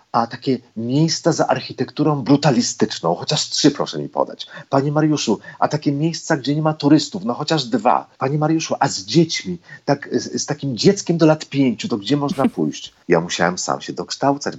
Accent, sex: native, male